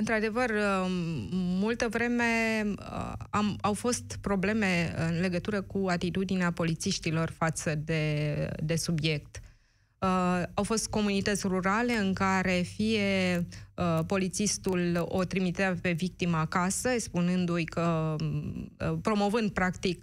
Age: 20-39